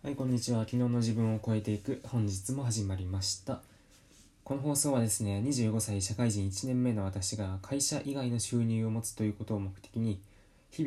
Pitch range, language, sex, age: 100-125 Hz, Japanese, male, 20-39